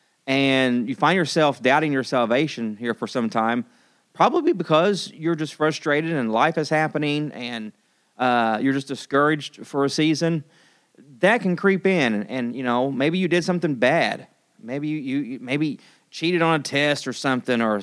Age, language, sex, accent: 30-49, English, male, American